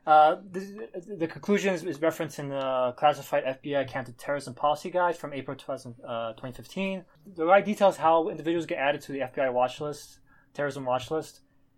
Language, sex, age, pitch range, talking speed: English, male, 20-39, 135-165 Hz, 170 wpm